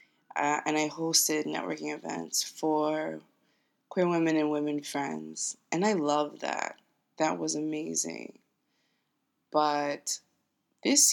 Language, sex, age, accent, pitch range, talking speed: English, female, 20-39, American, 145-165 Hz, 115 wpm